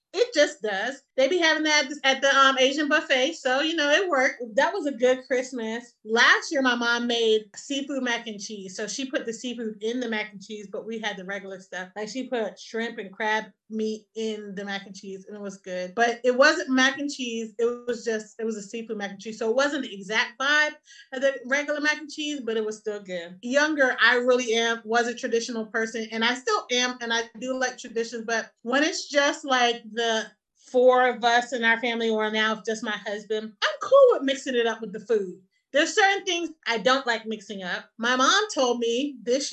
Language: English